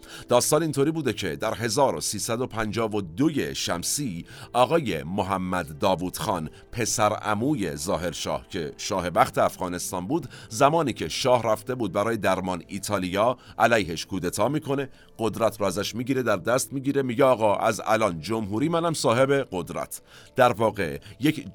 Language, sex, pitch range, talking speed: Persian, male, 100-135 Hz, 135 wpm